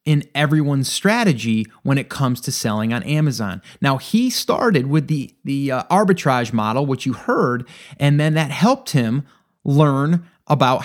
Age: 30-49